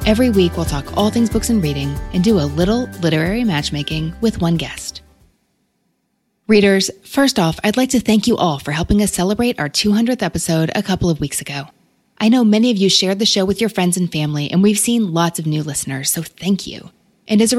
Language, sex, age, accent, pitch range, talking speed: English, female, 20-39, American, 165-220 Hz, 220 wpm